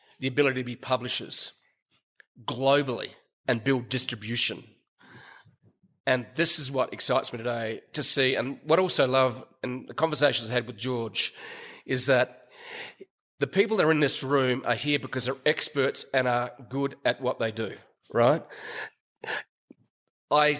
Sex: male